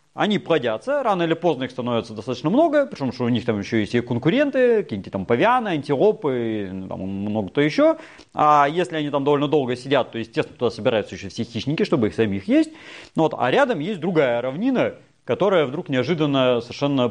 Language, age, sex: Russian, 30-49, male